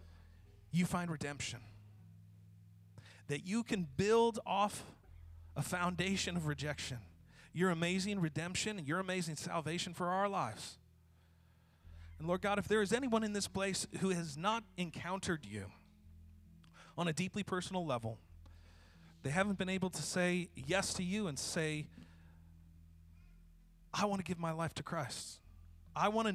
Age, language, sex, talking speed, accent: 40-59, English, male, 145 wpm, American